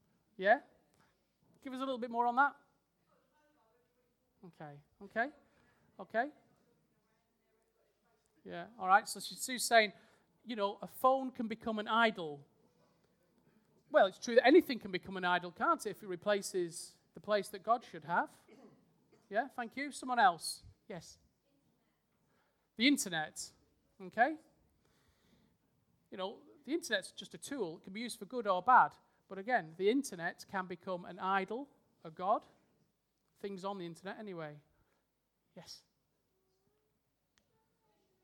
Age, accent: 40-59, British